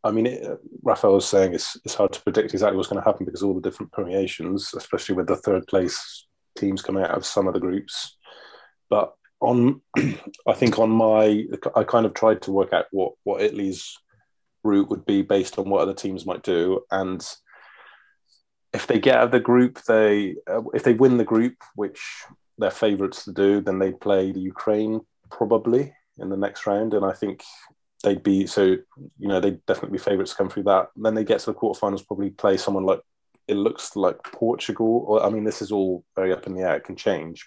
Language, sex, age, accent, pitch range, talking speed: English, male, 20-39, British, 95-110 Hz, 215 wpm